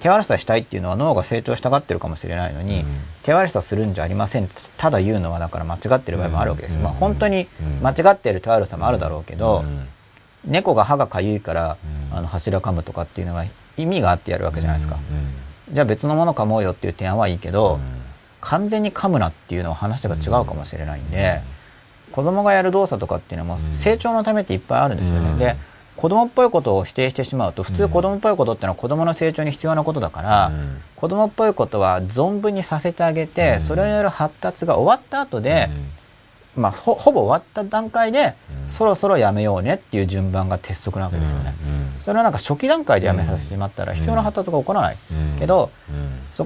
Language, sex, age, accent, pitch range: Japanese, male, 40-59, native, 80-135 Hz